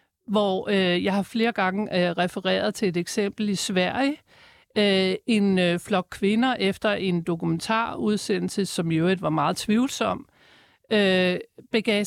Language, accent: Danish, native